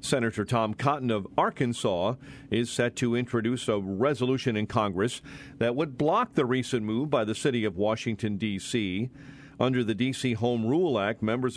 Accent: American